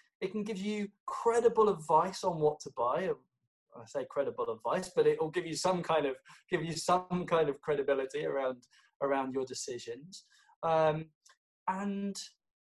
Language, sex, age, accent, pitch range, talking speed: English, male, 20-39, British, 150-200 Hz, 160 wpm